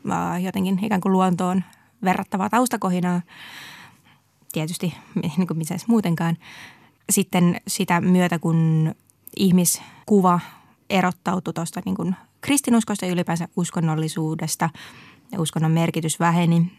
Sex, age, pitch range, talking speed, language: female, 20-39, 165-190 Hz, 95 wpm, Finnish